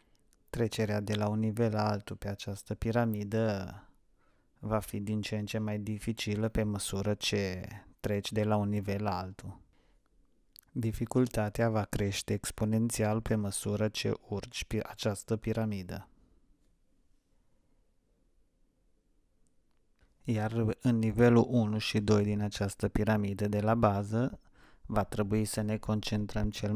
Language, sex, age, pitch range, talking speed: Romanian, male, 30-49, 100-110 Hz, 130 wpm